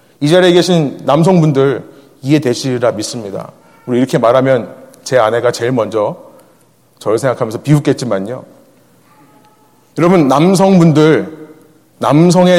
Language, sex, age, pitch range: Korean, male, 30-49, 135-185 Hz